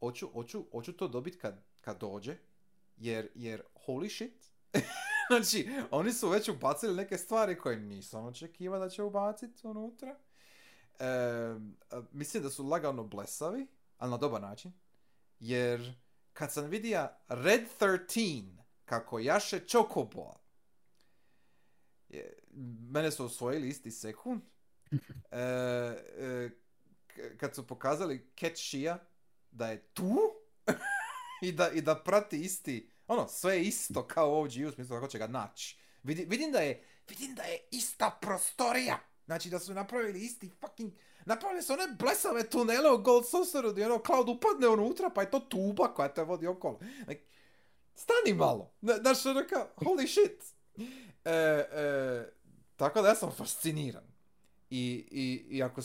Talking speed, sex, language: 135 wpm, male, Croatian